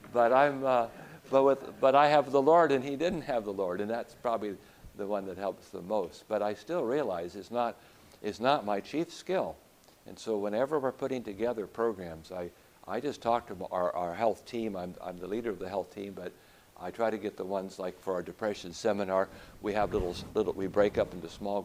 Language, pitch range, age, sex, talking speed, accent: English, 100-135 Hz, 60-79, male, 225 wpm, American